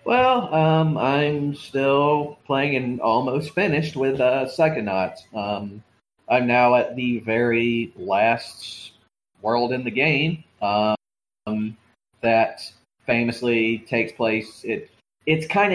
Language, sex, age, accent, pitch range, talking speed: English, male, 30-49, American, 105-135 Hz, 115 wpm